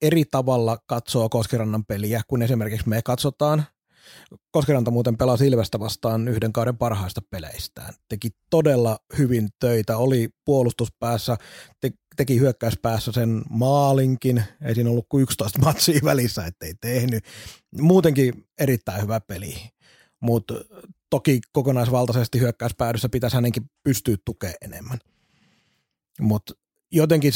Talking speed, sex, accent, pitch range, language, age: 115 wpm, male, native, 115-150 Hz, Finnish, 30-49